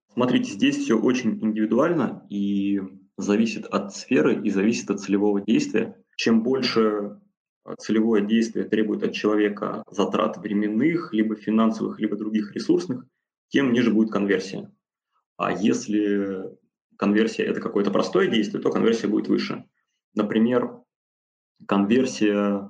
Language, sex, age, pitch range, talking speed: Russian, male, 20-39, 100-110 Hz, 120 wpm